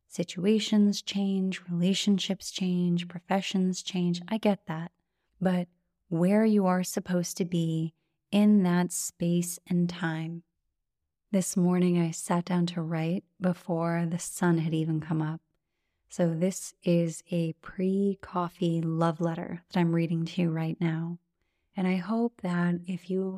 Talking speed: 140 wpm